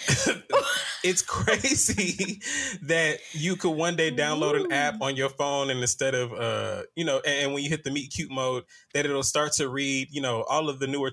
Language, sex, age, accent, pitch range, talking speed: English, male, 20-39, American, 125-155 Hz, 205 wpm